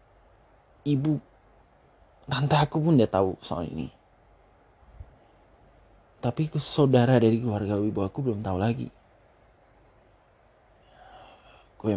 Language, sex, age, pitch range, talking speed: Indonesian, male, 20-39, 100-125 Hz, 85 wpm